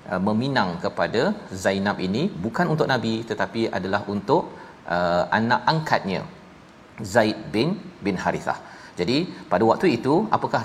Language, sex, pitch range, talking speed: Malayalam, male, 105-135 Hz, 125 wpm